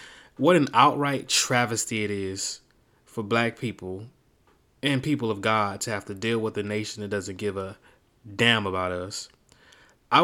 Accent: American